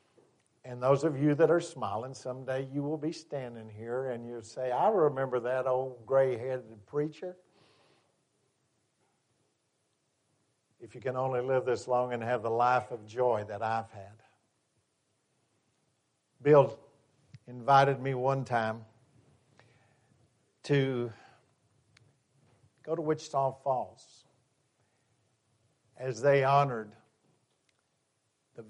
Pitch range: 120-140 Hz